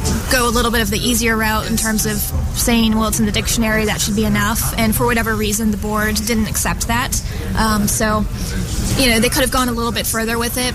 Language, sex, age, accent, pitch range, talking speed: English, female, 20-39, American, 210-230 Hz, 245 wpm